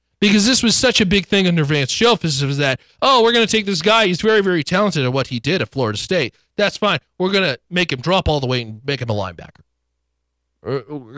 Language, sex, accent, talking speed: English, male, American, 250 wpm